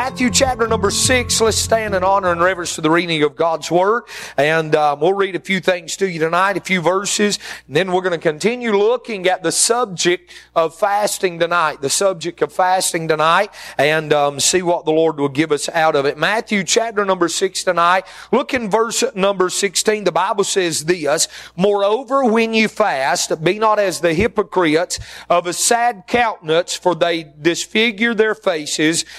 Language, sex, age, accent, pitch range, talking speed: English, male, 40-59, American, 170-210 Hz, 185 wpm